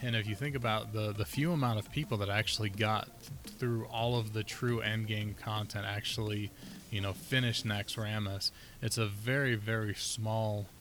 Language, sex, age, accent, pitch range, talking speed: English, male, 20-39, American, 105-115 Hz, 185 wpm